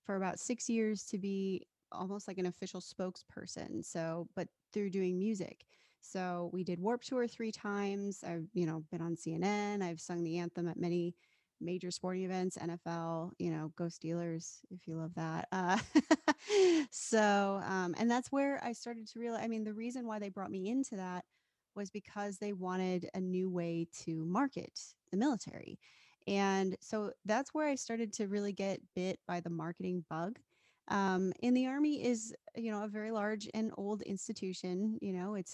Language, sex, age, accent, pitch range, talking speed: English, female, 20-39, American, 180-210 Hz, 180 wpm